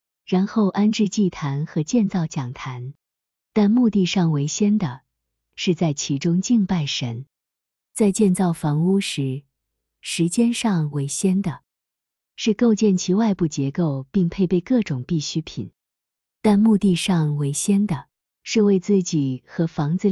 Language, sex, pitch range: Chinese, female, 145-195 Hz